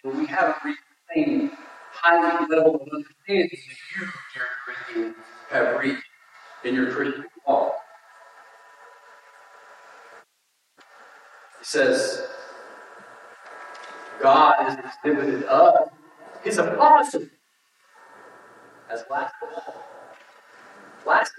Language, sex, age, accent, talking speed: English, male, 50-69, American, 95 wpm